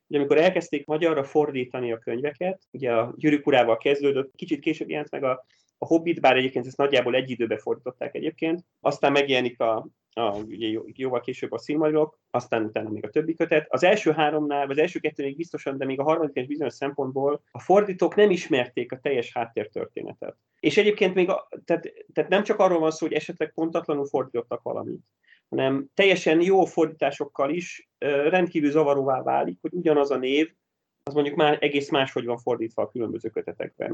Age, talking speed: 30-49, 175 wpm